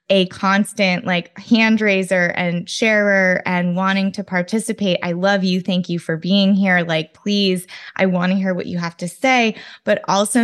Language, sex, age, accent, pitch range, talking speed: English, female, 20-39, American, 180-210 Hz, 185 wpm